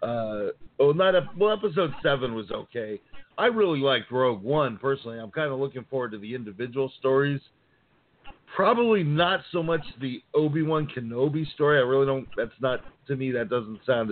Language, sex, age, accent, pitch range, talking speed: English, male, 50-69, American, 130-180 Hz, 185 wpm